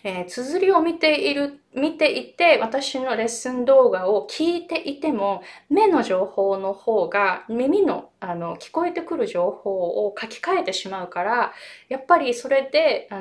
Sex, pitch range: female, 200-310 Hz